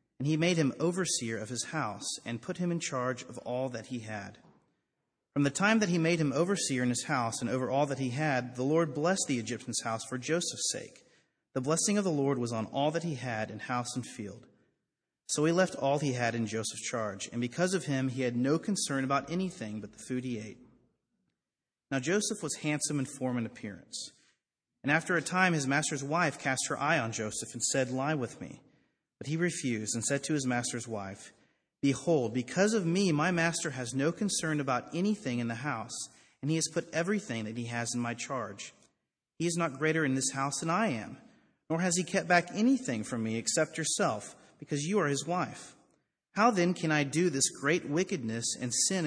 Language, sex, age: English, male, 30-49